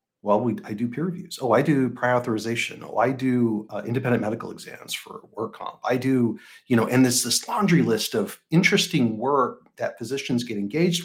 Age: 40-59